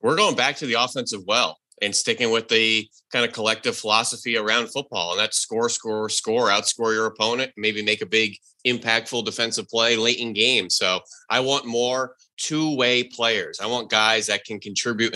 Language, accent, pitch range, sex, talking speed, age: English, American, 105-125 Hz, male, 190 wpm, 30-49